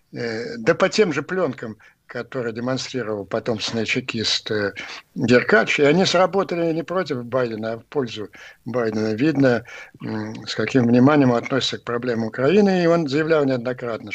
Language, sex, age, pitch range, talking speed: Russian, male, 60-79, 115-150 Hz, 140 wpm